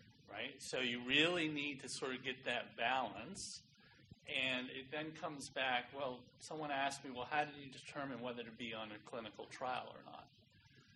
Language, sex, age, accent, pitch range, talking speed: English, male, 40-59, American, 120-145 Hz, 180 wpm